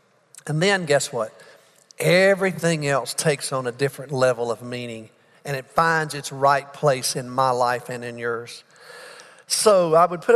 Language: English